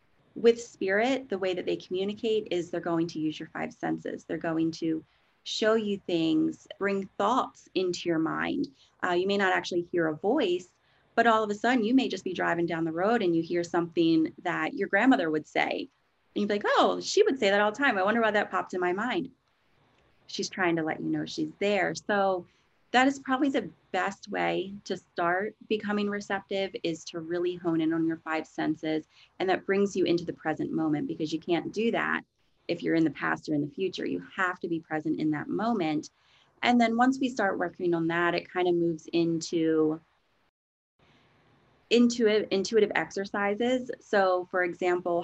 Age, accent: 30-49, American